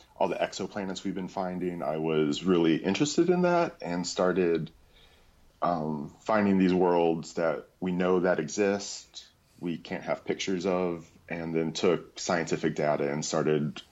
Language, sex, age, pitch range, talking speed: English, male, 30-49, 80-100 Hz, 150 wpm